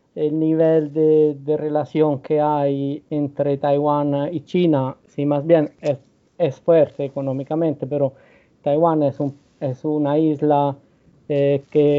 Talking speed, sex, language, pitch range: 140 wpm, male, Spanish, 140-155 Hz